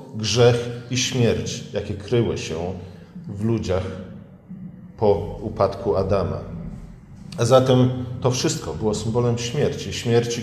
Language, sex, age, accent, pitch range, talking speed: Polish, male, 40-59, native, 110-130 Hz, 110 wpm